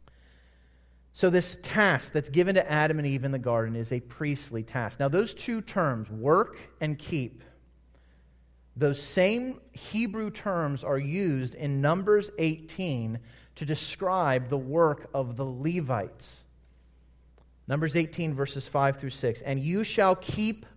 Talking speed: 140 wpm